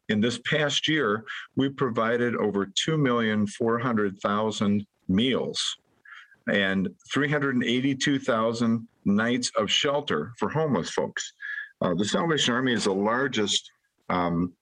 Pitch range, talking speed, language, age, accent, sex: 95-135 Hz, 130 wpm, English, 50-69, American, male